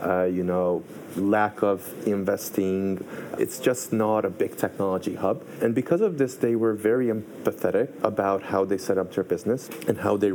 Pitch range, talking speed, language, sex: 95-115 Hz, 180 wpm, English, male